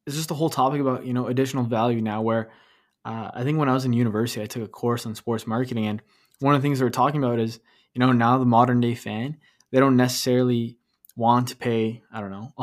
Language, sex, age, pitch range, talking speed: English, male, 20-39, 115-130 Hz, 250 wpm